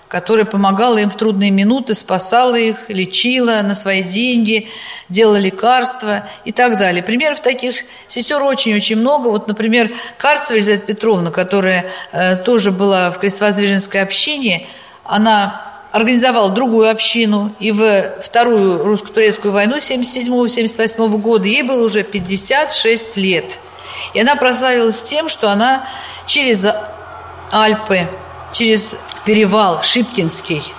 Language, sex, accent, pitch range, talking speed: Russian, female, native, 205-250 Hz, 120 wpm